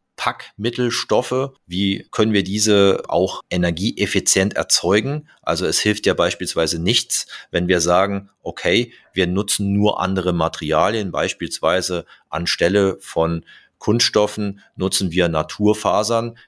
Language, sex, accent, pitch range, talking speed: German, male, German, 90-110 Hz, 110 wpm